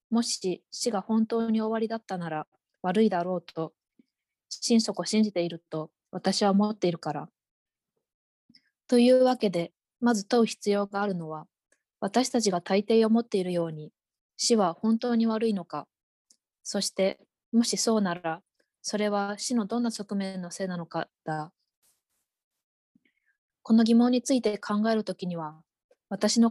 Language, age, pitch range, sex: Japanese, 20-39, 170-220 Hz, female